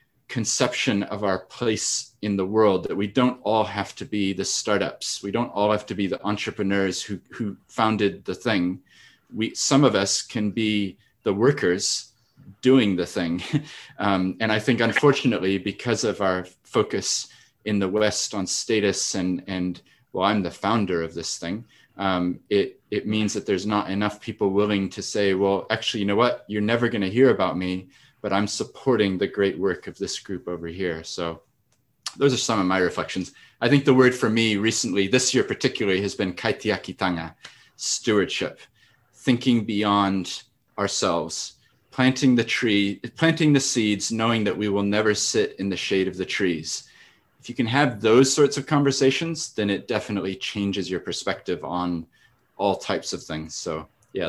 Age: 30-49